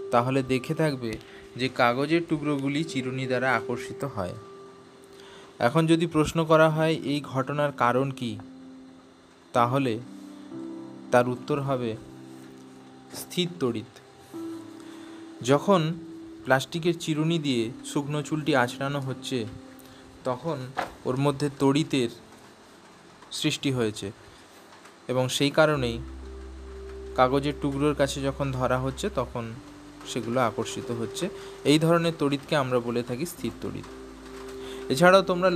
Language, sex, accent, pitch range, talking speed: Bengali, male, native, 120-150 Hz, 70 wpm